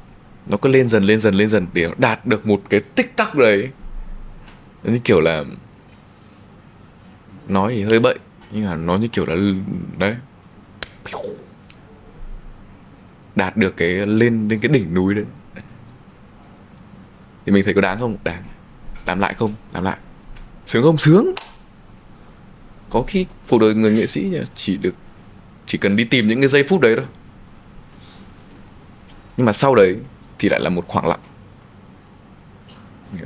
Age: 20-39